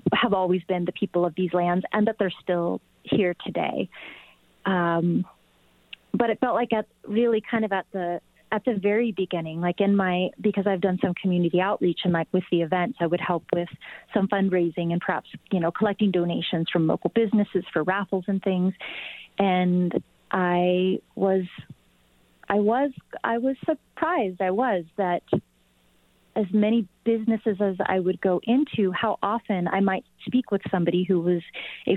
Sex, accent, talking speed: female, American, 170 wpm